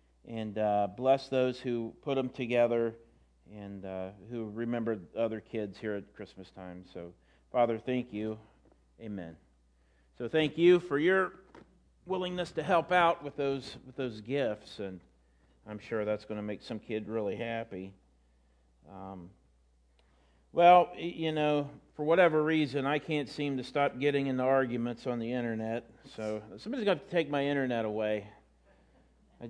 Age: 40-59